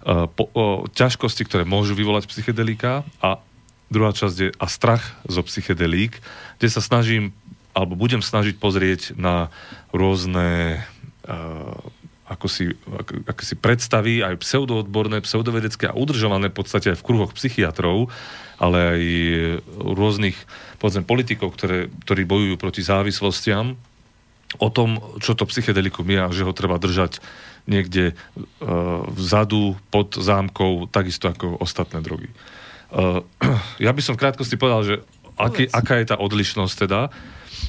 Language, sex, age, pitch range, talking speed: Slovak, male, 40-59, 95-115 Hz, 135 wpm